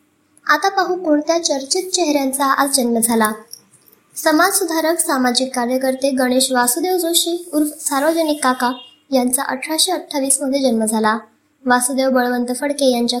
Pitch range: 250-305 Hz